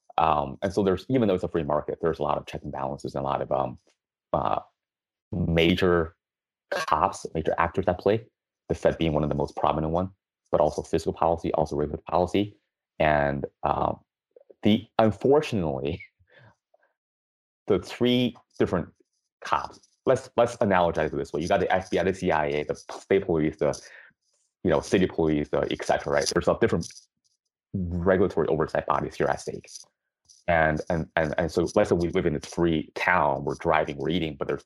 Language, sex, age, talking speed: English, male, 30-49, 180 wpm